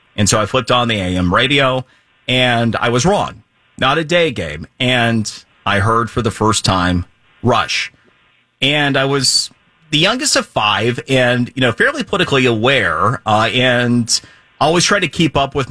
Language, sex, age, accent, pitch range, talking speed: English, male, 40-59, American, 105-130 Hz, 170 wpm